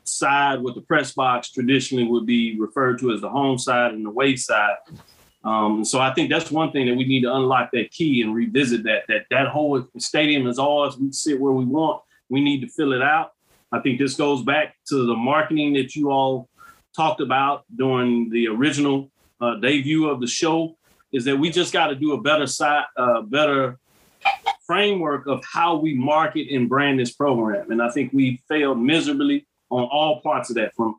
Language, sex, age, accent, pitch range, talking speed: English, male, 30-49, American, 125-150 Hz, 205 wpm